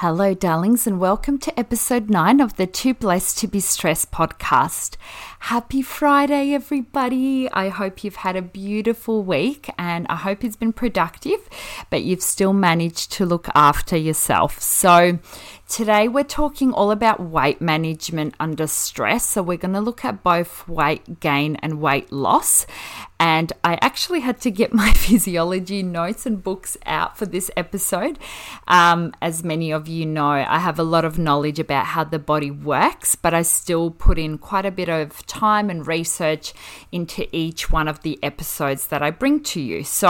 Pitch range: 160-210 Hz